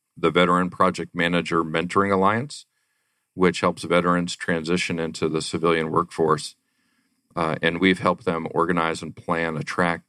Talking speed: 145 wpm